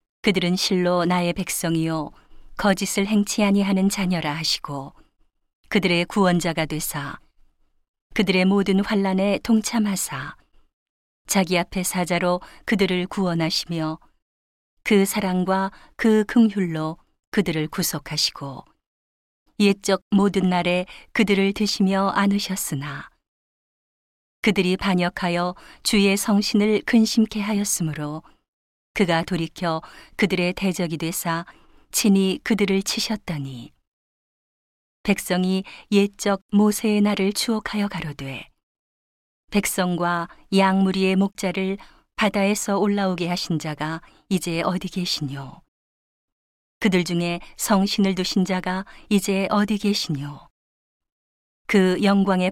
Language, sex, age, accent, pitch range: Korean, female, 40-59, native, 165-200 Hz